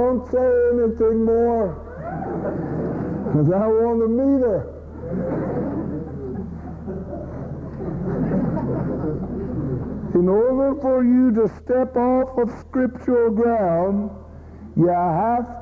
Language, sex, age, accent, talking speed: English, male, 60-79, American, 85 wpm